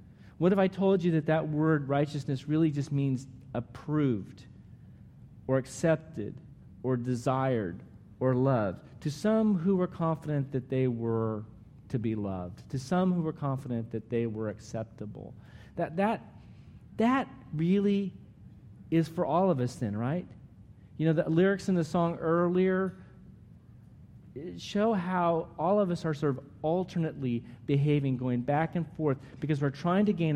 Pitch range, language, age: 125-165 Hz, English, 40-59